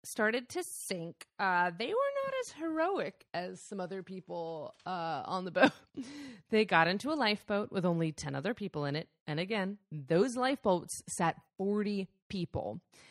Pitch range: 165-225 Hz